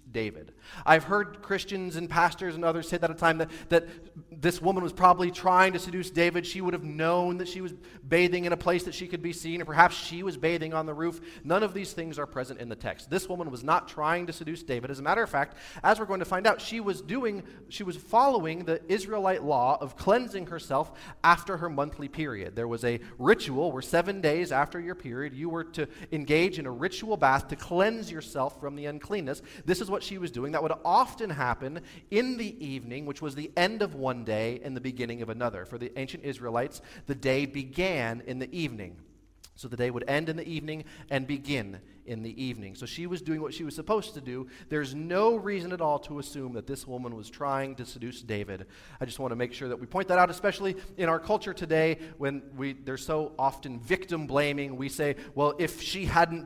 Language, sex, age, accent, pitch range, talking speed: English, male, 30-49, American, 135-175 Hz, 230 wpm